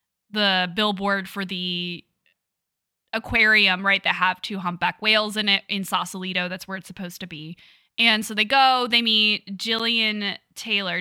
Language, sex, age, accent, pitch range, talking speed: English, female, 20-39, American, 190-235 Hz, 160 wpm